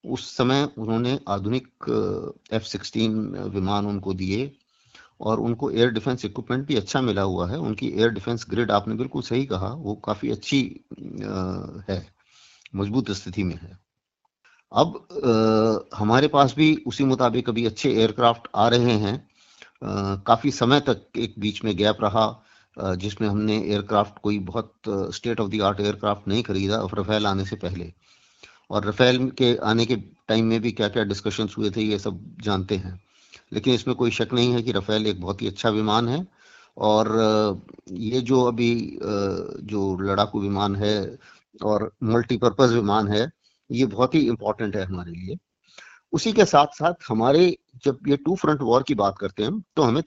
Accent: native